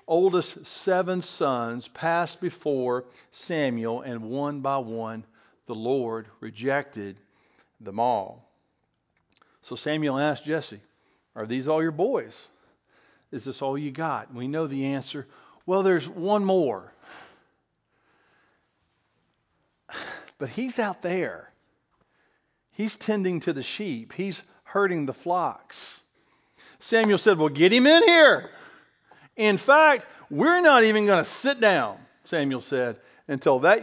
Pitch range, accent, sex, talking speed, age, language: 120-175 Hz, American, male, 125 wpm, 50-69, English